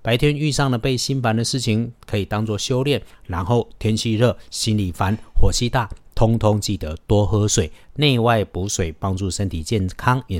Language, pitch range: Chinese, 90-115 Hz